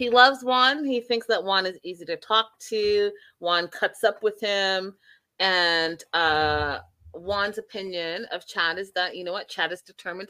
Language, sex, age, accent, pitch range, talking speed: English, female, 30-49, American, 155-190 Hz, 180 wpm